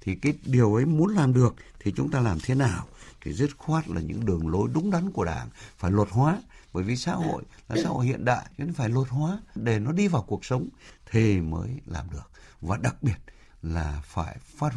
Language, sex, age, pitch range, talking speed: Vietnamese, male, 60-79, 85-135 Hz, 230 wpm